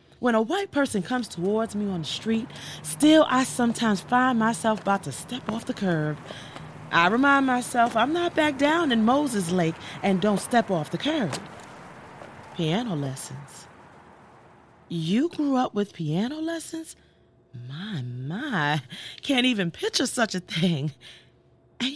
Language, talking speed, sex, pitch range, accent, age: English, 150 wpm, female, 180-295 Hz, American, 30-49